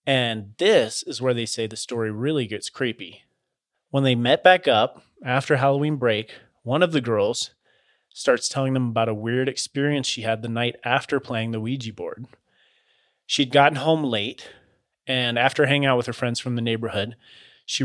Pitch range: 115-140 Hz